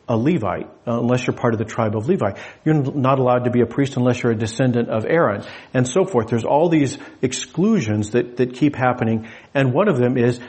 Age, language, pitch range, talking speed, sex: 50-69, English, 115-145 Hz, 225 wpm, male